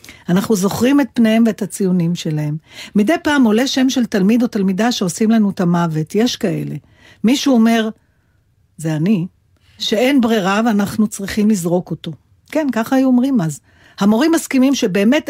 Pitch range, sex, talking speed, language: 170-225 Hz, female, 155 wpm, Hebrew